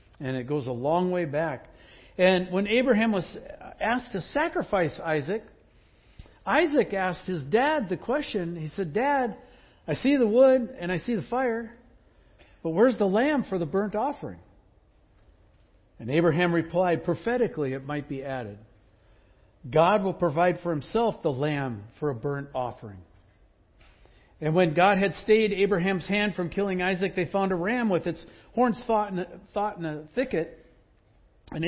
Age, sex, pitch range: 60-79, male, 125-210 Hz